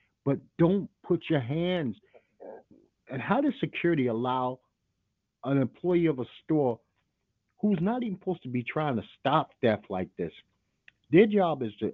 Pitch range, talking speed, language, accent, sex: 100-135 Hz, 155 wpm, English, American, male